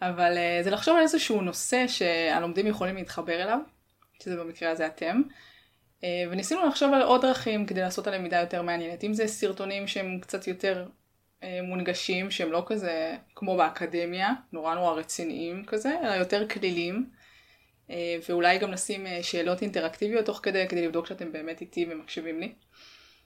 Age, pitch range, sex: 20-39, 170-210 Hz, female